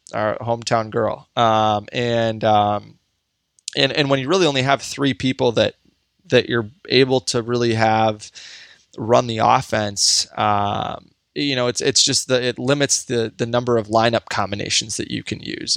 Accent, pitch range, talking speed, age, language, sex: American, 105-125 Hz, 165 wpm, 20-39, English, male